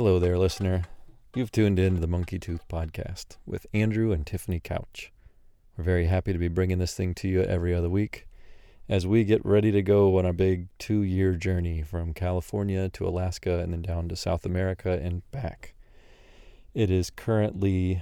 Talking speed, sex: 185 wpm, male